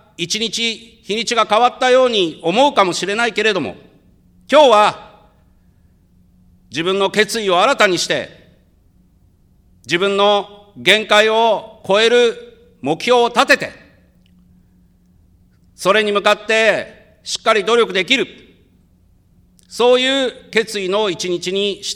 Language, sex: Japanese, male